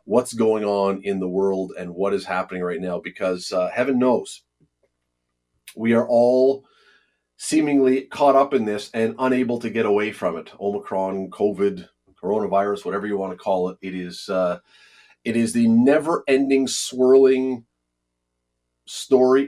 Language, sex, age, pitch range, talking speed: English, male, 30-49, 95-125 Hz, 150 wpm